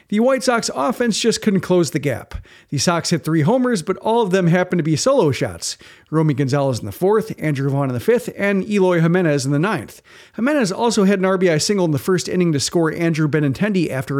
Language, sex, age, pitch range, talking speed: English, male, 40-59, 150-200 Hz, 230 wpm